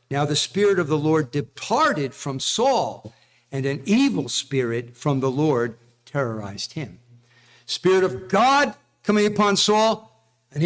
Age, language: 50-69, English